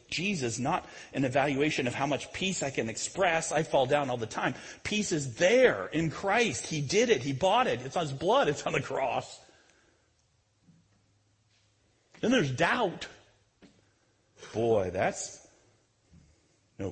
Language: English